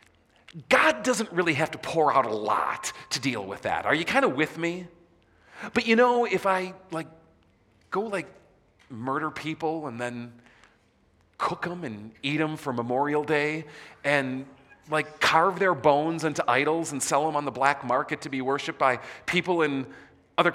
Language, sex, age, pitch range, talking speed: English, male, 40-59, 135-180 Hz, 175 wpm